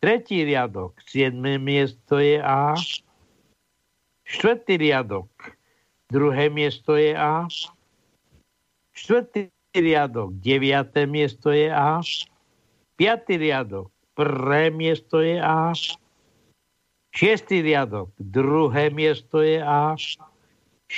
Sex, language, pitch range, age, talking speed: male, Slovak, 125-165 Hz, 60-79, 85 wpm